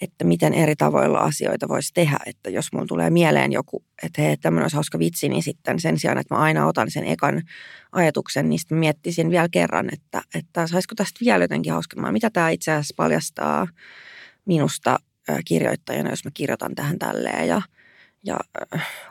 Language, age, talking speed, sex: Finnish, 20-39, 175 wpm, female